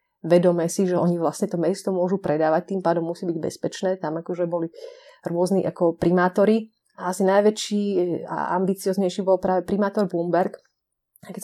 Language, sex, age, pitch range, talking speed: Slovak, female, 30-49, 170-205 Hz, 155 wpm